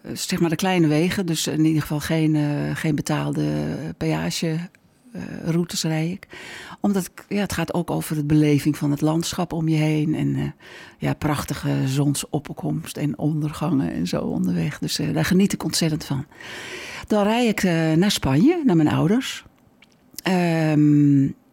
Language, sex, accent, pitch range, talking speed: Dutch, female, Dutch, 145-170 Hz, 165 wpm